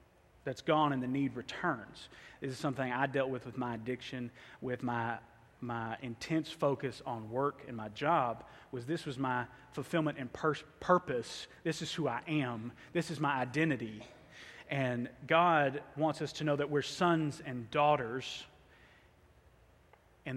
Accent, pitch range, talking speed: American, 120-150 Hz, 160 wpm